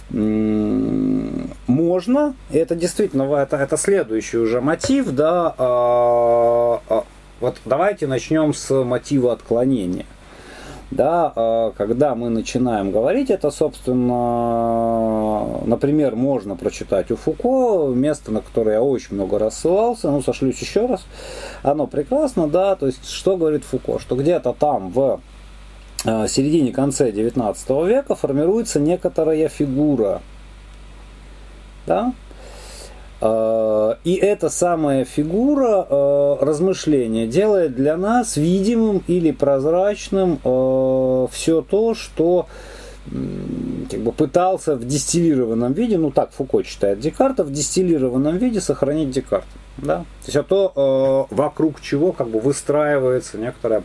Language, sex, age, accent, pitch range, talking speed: Russian, male, 30-49, native, 125-175 Hz, 110 wpm